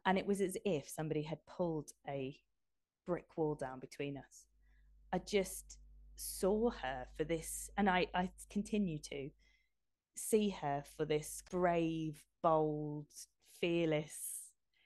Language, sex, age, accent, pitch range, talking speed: English, female, 20-39, British, 145-180 Hz, 130 wpm